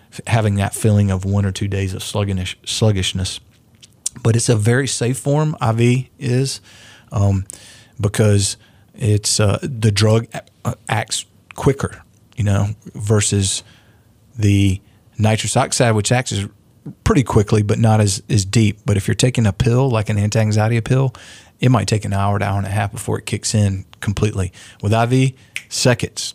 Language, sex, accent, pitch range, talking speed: English, male, American, 100-115 Hz, 160 wpm